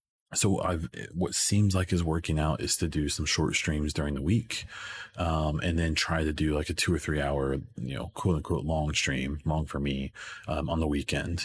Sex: male